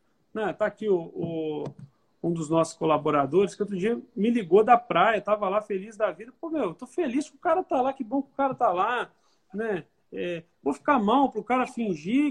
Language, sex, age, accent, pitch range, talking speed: Portuguese, male, 40-59, Brazilian, 180-250 Hz, 205 wpm